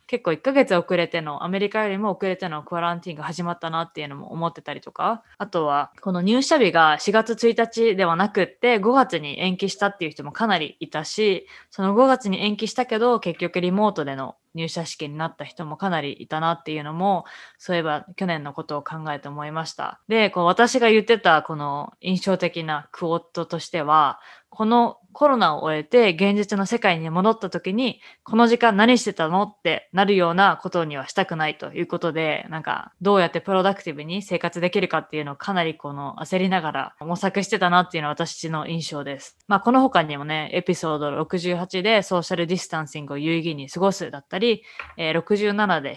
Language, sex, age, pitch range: Japanese, female, 20-39, 160-205 Hz